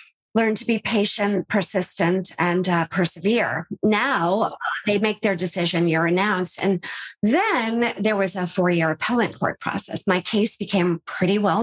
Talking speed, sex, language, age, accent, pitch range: 150 wpm, female, English, 50-69, American, 175-235 Hz